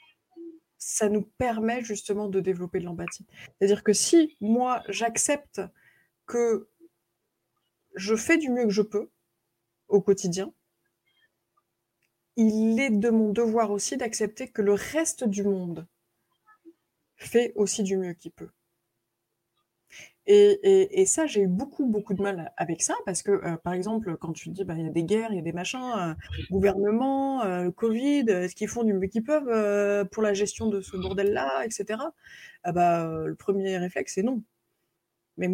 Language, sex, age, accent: French, female, 20-39, French